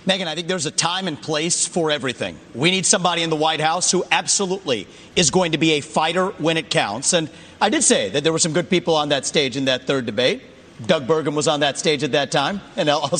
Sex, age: male, 40-59